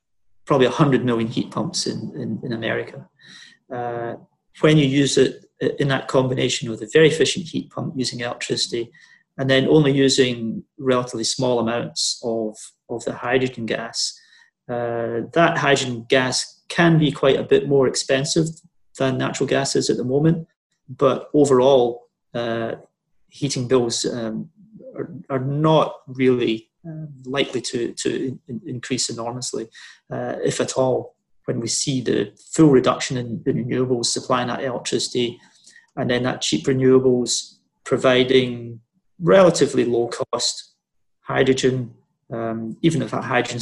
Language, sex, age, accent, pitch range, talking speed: English, male, 30-49, British, 115-140 Hz, 140 wpm